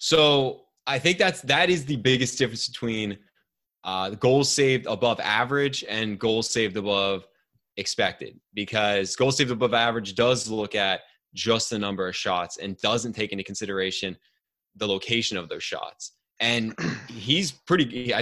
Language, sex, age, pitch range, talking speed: English, male, 20-39, 100-130 Hz, 155 wpm